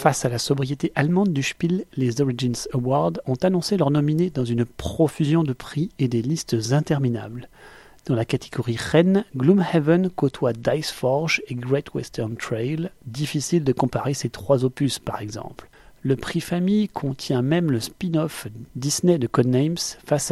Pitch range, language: 125-165 Hz, French